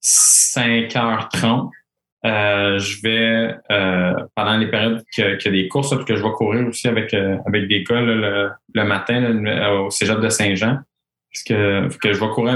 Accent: Canadian